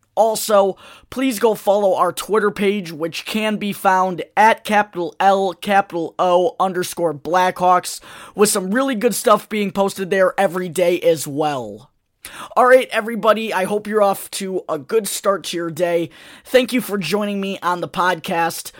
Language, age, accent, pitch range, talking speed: English, 20-39, American, 170-210 Hz, 165 wpm